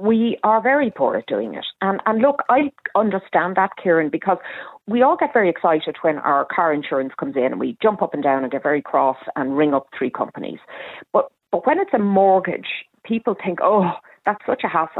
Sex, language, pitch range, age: female, English, 150-205 Hz, 40-59